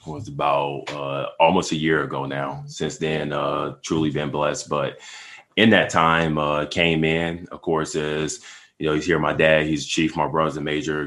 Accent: American